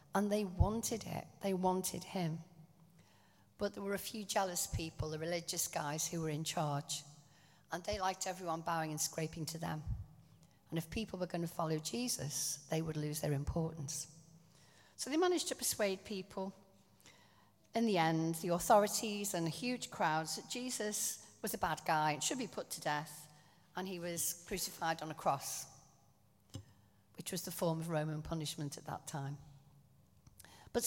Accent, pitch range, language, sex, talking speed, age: British, 150-200 Hz, English, female, 170 wpm, 50-69